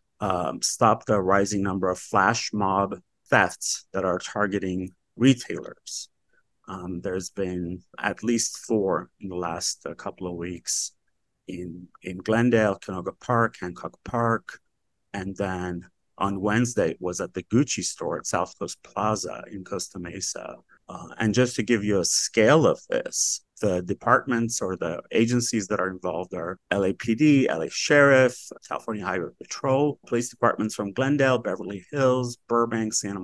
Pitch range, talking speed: 95-120 Hz, 150 wpm